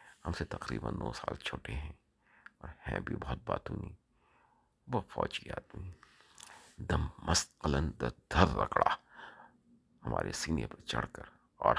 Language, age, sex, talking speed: Urdu, 50-69, male, 130 wpm